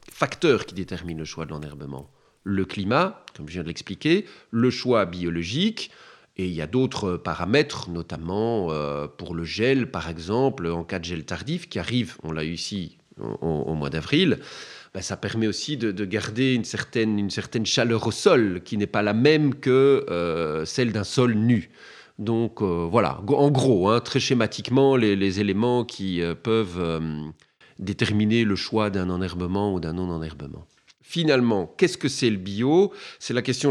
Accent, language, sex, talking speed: French, French, male, 165 wpm